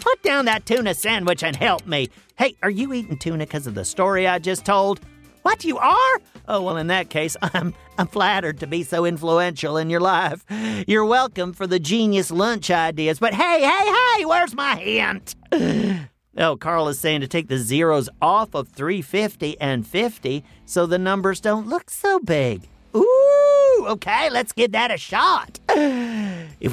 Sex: male